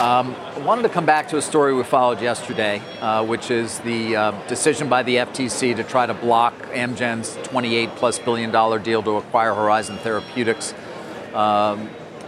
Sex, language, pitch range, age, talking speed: male, English, 120-150 Hz, 40-59, 165 wpm